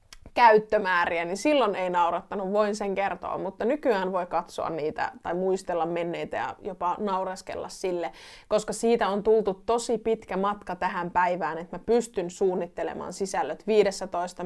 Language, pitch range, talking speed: Finnish, 180-225 Hz, 145 wpm